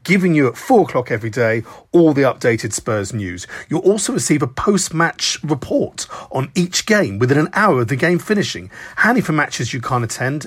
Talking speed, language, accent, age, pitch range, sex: 195 wpm, English, British, 50-69, 120-175 Hz, male